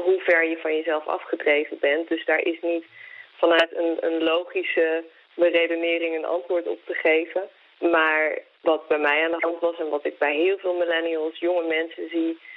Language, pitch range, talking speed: Dutch, 160-185 Hz, 185 wpm